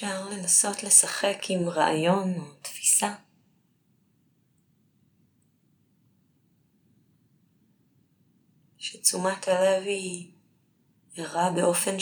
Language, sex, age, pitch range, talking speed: Hebrew, female, 20-39, 155-180 Hz, 60 wpm